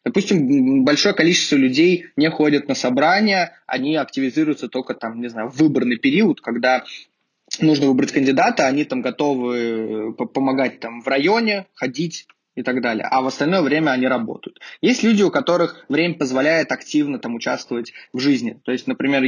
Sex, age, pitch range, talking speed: male, 20-39, 130-175 Hz, 160 wpm